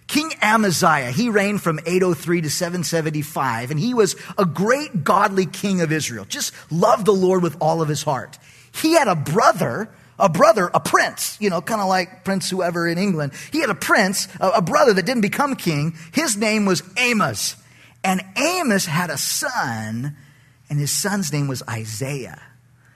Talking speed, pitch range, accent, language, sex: 180 wpm, 150-195 Hz, American, English, male